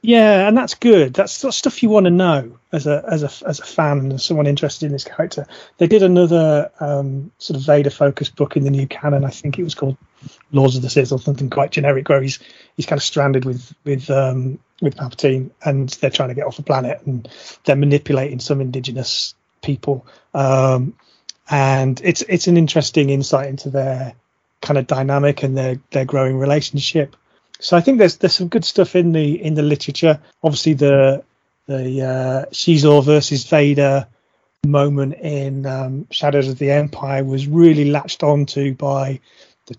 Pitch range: 135-160 Hz